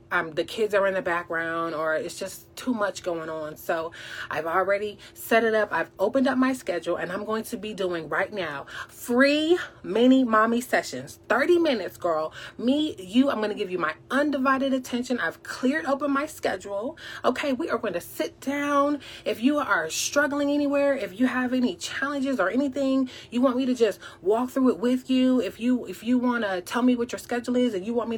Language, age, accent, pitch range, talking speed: English, 30-49, American, 195-260 Hz, 210 wpm